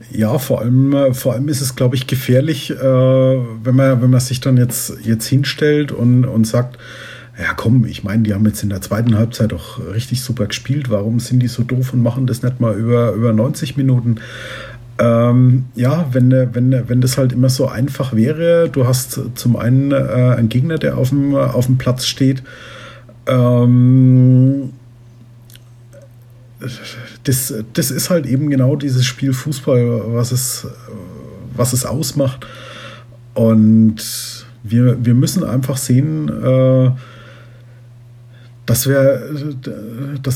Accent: German